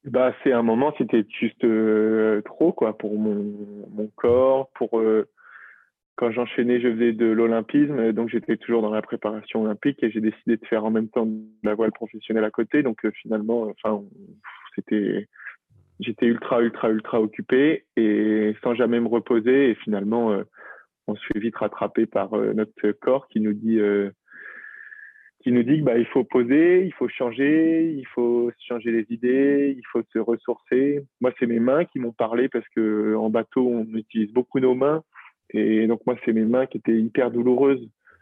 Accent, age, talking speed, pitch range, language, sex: French, 20-39, 185 wpm, 110-130 Hz, French, male